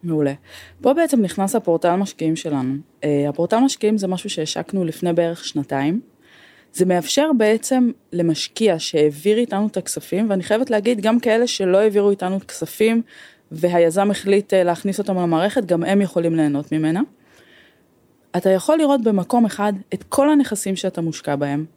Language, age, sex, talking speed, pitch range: Hebrew, 20-39, female, 150 wpm, 165-225 Hz